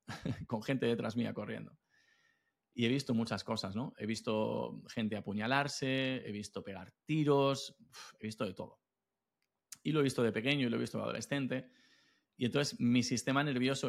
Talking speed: 175 wpm